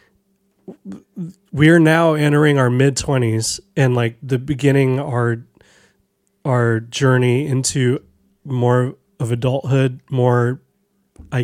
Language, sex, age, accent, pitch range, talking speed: English, male, 30-49, American, 120-145 Hz, 110 wpm